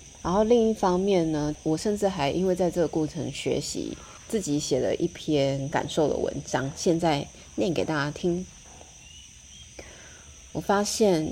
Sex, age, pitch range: female, 30-49, 145-180 Hz